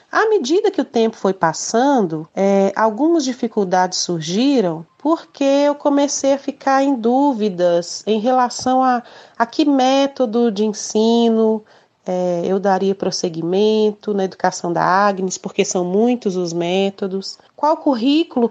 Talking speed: 125 wpm